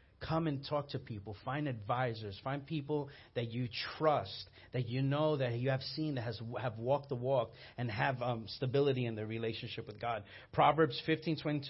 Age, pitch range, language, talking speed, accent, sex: 30-49, 120-150 Hz, English, 185 wpm, American, male